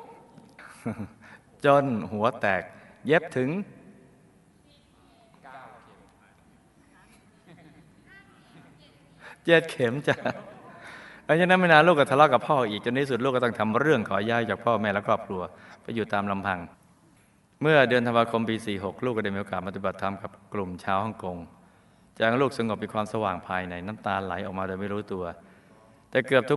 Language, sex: Thai, male